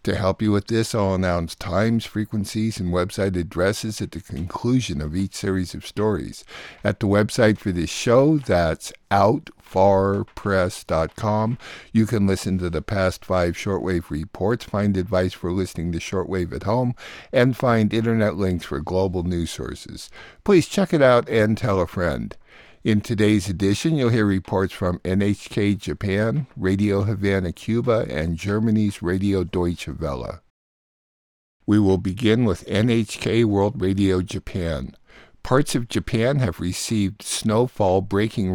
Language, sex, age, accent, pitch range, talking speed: English, male, 60-79, American, 90-110 Hz, 145 wpm